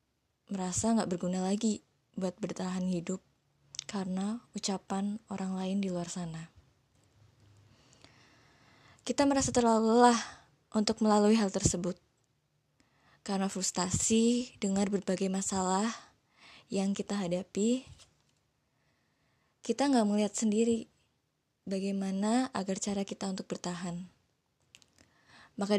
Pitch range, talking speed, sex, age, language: 185-220 Hz, 95 wpm, female, 20-39, Indonesian